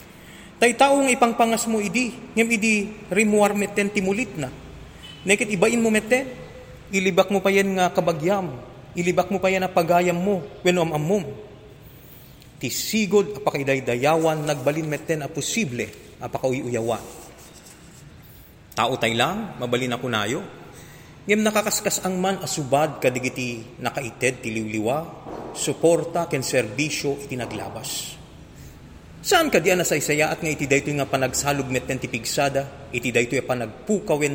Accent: native